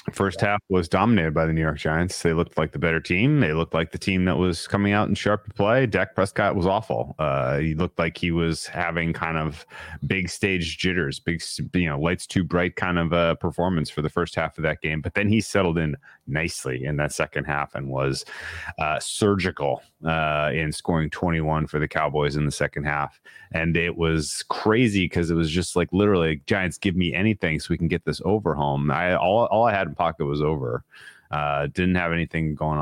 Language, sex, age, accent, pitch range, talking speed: English, male, 30-49, American, 75-90 Hz, 225 wpm